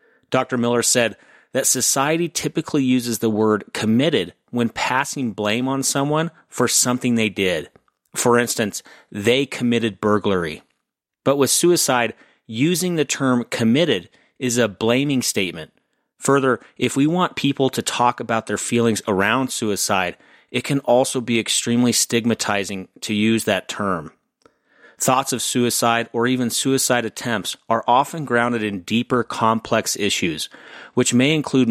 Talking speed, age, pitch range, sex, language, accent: 140 wpm, 30-49, 110-130 Hz, male, English, American